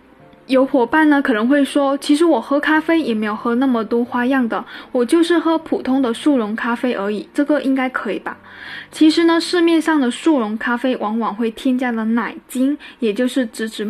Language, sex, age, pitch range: Chinese, female, 10-29, 235-285 Hz